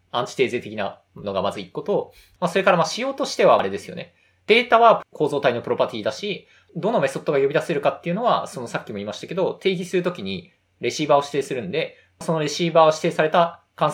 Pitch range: 150-225 Hz